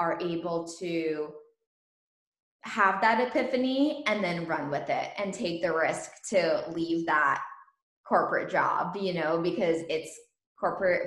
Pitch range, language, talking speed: 165-215 Hz, English, 135 wpm